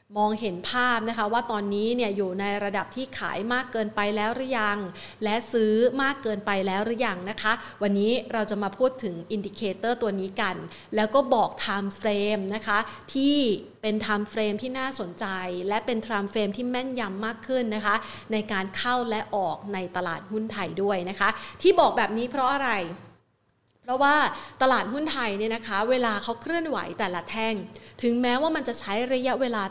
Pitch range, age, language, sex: 200-245 Hz, 30-49, Thai, female